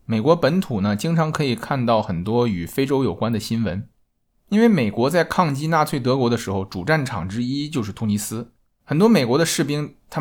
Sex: male